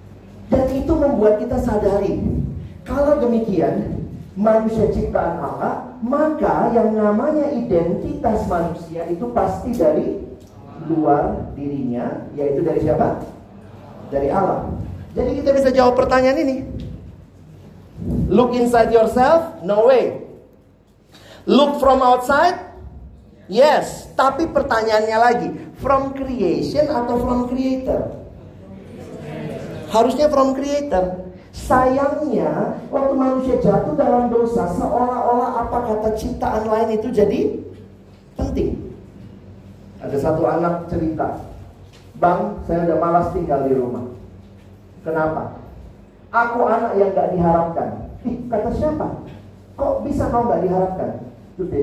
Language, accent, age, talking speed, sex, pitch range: Indonesian, native, 40-59, 105 wpm, male, 160-255 Hz